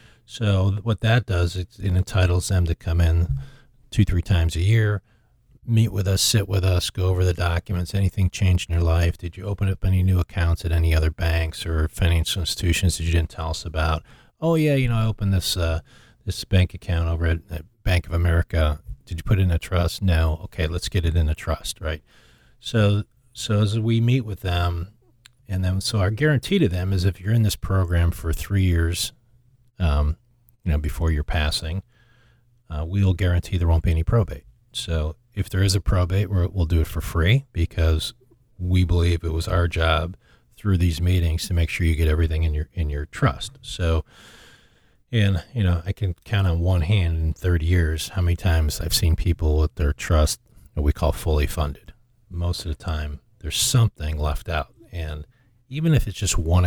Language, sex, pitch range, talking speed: English, male, 85-105 Hz, 200 wpm